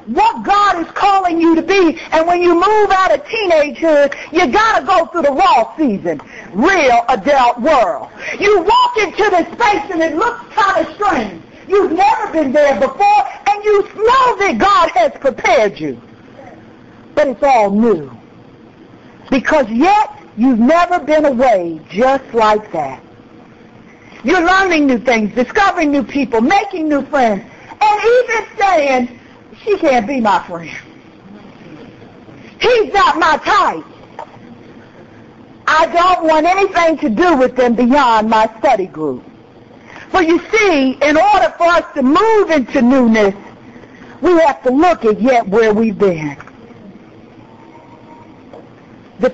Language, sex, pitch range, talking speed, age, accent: English, female, 240-375 Hz, 140 wpm, 60-79, American